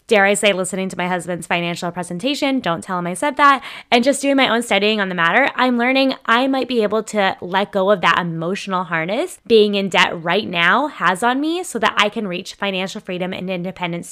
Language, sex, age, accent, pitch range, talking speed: English, female, 10-29, American, 190-250 Hz, 230 wpm